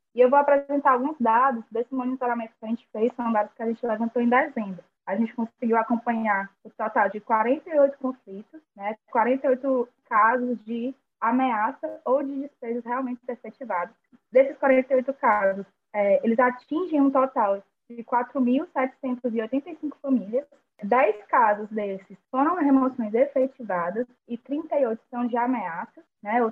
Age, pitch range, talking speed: 10-29, 220-270 Hz, 145 wpm